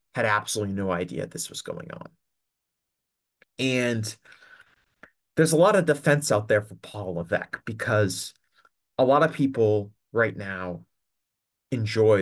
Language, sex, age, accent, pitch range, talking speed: English, male, 30-49, American, 95-130 Hz, 135 wpm